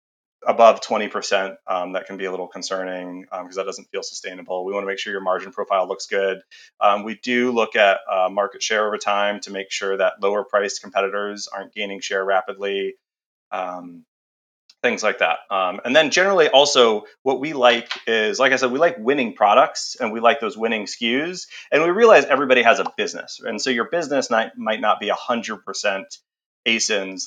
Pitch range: 95-115 Hz